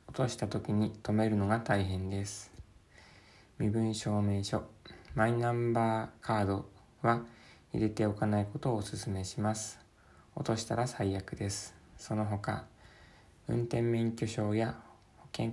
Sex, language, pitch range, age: male, Japanese, 100-115 Hz, 20-39